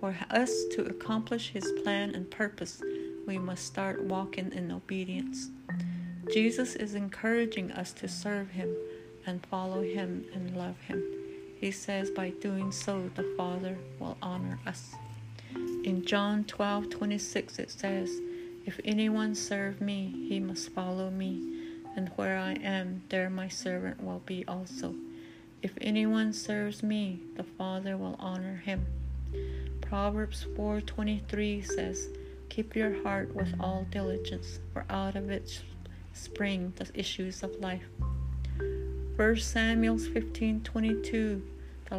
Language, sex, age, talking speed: English, female, 70-89, 130 wpm